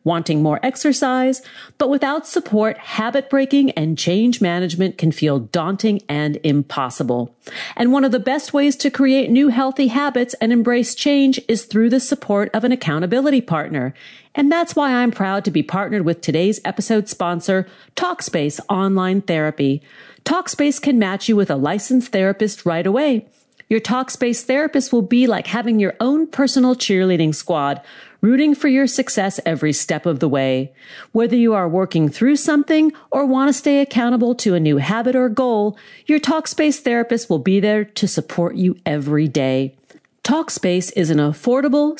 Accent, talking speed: American, 165 wpm